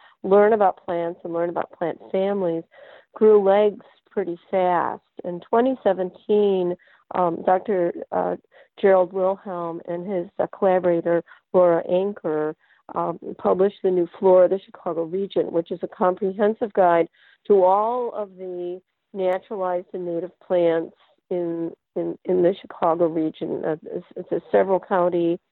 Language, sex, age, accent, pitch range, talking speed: English, female, 50-69, American, 175-200 Hz, 140 wpm